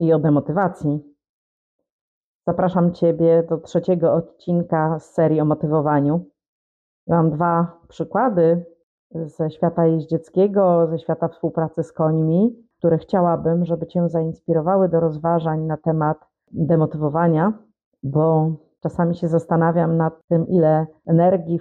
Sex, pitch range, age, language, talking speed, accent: female, 160-185 Hz, 40-59, Polish, 115 wpm, native